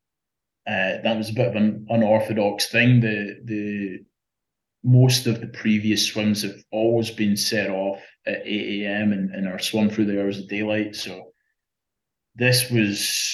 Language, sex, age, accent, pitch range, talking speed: English, male, 20-39, British, 100-115 Hz, 160 wpm